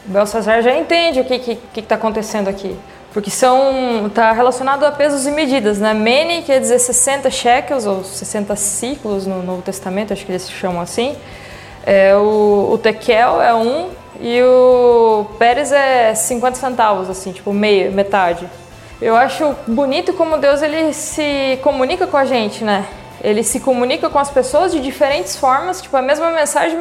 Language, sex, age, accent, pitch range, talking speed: Portuguese, female, 20-39, Brazilian, 215-285 Hz, 170 wpm